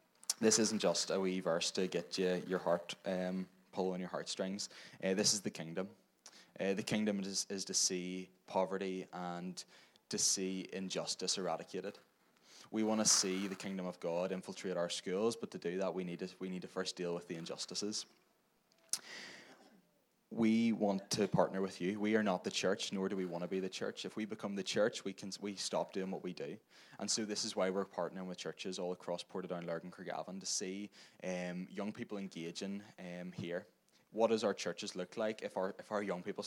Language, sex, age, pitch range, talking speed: English, male, 20-39, 90-105 Hz, 210 wpm